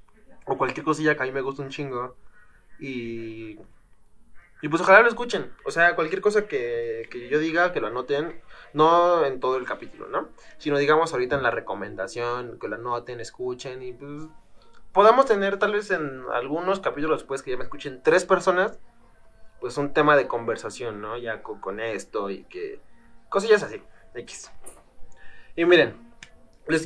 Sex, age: male, 20-39